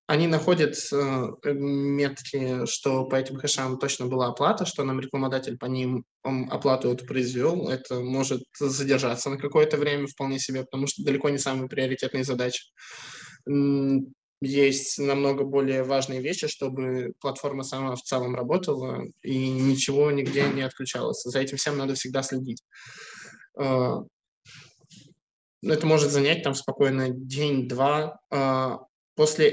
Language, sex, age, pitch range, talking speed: Russian, male, 20-39, 130-145 Hz, 125 wpm